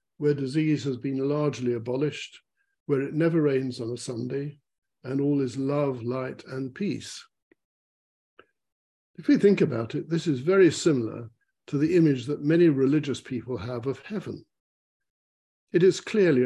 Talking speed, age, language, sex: 155 wpm, 60-79, English, male